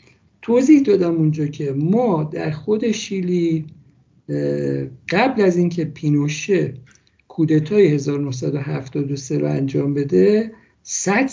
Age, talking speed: 50-69, 95 wpm